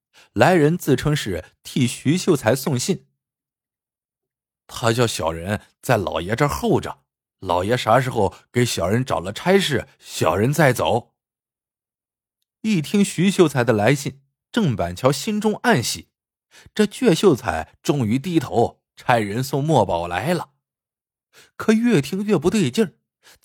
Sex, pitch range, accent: male, 115-185 Hz, native